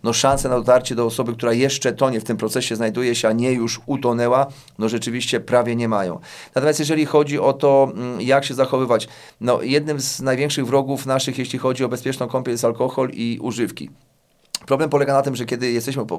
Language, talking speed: Polish, 200 wpm